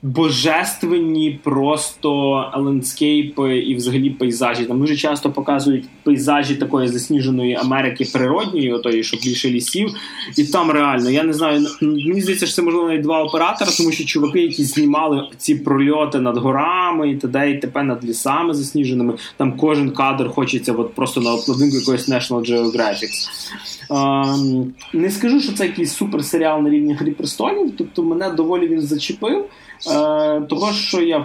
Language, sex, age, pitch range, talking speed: Russian, male, 20-39, 135-170 Hz, 145 wpm